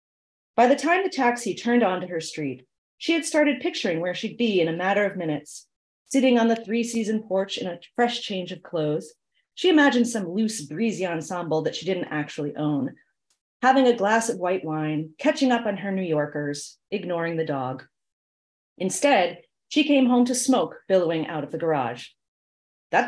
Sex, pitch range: female, 165-270 Hz